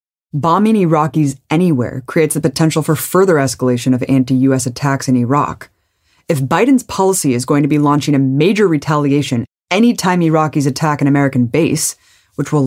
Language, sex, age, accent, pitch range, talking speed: English, female, 20-39, American, 135-195 Hz, 160 wpm